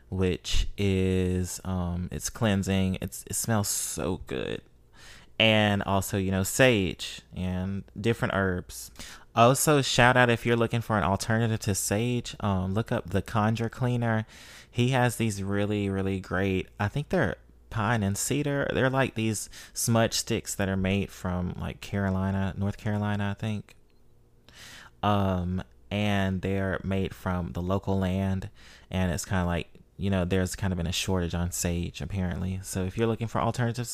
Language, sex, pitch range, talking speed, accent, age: English, male, 90-115 Hz, 160 wpm, American, 20-39